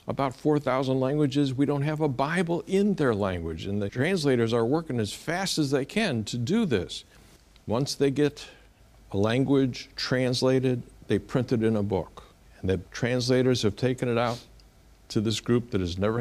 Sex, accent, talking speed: male, American, 180 wpm